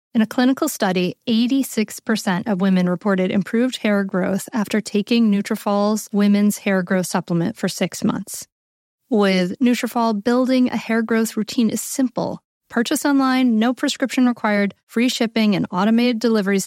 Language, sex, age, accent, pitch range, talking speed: English, female, 30-49, American, 190-240 Hz, 145 wpm